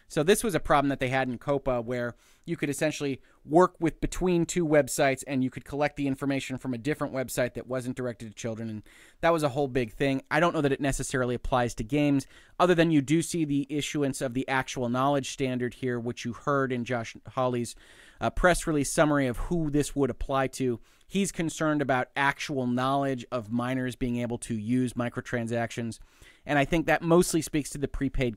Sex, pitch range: male, 120-150 Hz